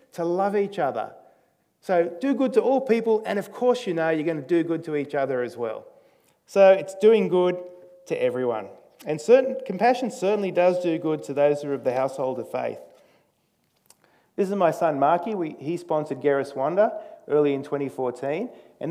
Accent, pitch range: Australian, 130-180 Hz